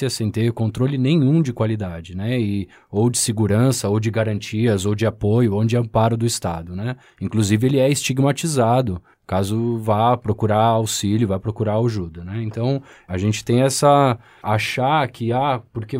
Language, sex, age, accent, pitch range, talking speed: Portuguese, male, 20-39, Brazilian, 105-135 Hz, 165 wpm